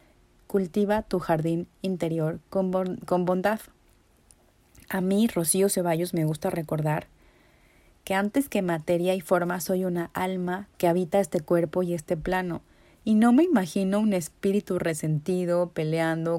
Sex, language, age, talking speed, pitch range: female, Spanish, 30-49, 135 wpm, 170-205 Hz